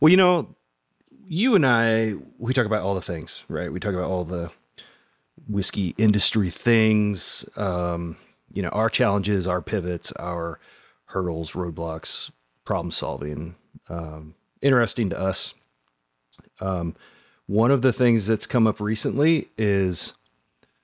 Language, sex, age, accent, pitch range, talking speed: English, male, 30-49, American, 85-110 Hz, 135 wpm